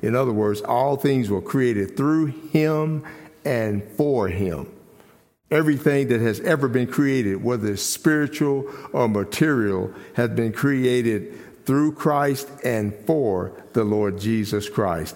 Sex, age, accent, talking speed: male, 50-69, American, 135 wpm